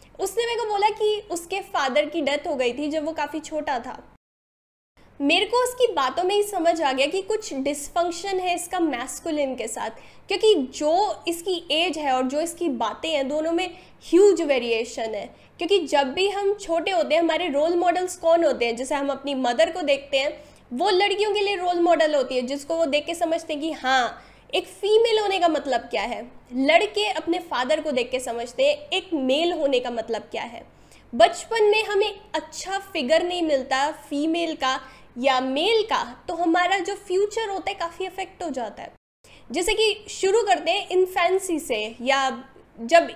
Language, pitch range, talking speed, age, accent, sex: Hindi, 285-380 Hz, 190 wpm, 10-29, native, female